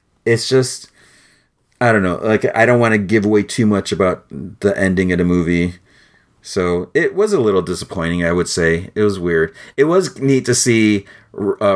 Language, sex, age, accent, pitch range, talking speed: English, male, 30-49, American, 90-120 Hz, 195 wpm